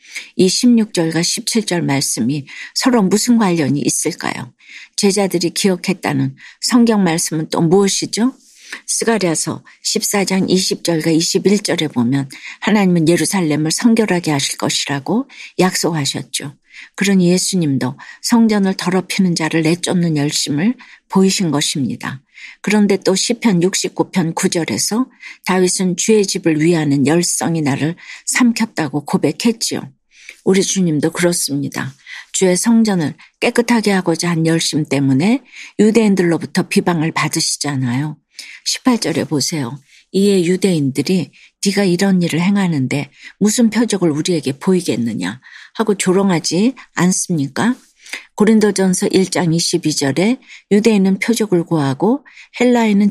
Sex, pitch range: female, 160-205 Hz